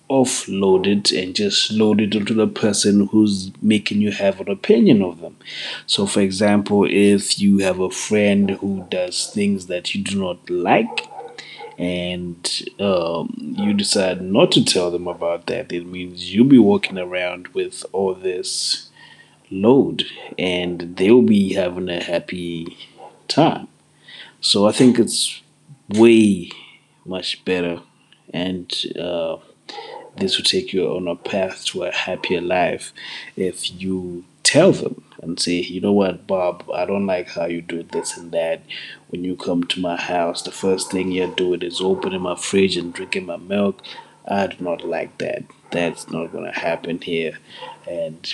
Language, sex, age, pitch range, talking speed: English, male, 30-49, 90-105 Hz, 165 wpm